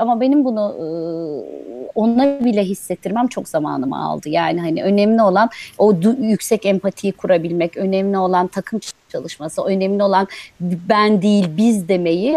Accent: native